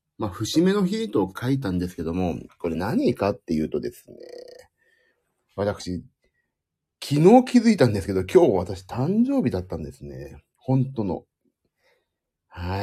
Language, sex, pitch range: Japanese, male, 95-160 Hz